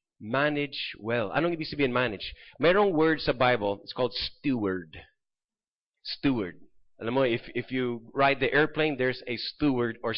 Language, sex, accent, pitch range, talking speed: English, male, Filipino, 115-160 Hz, 155 wpm